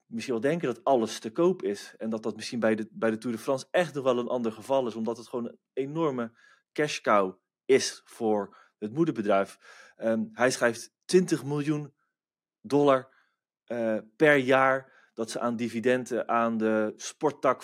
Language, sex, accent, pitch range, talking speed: Dutch, male, Dutch, 110-145 Hz, 170 wpm